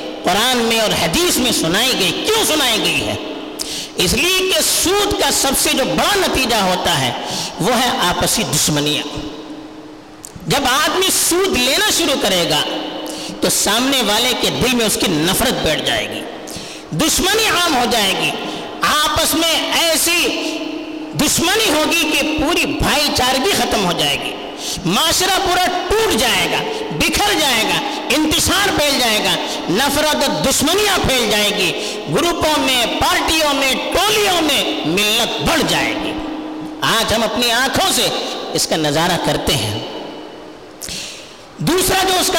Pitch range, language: 240-355 Hz, Urdu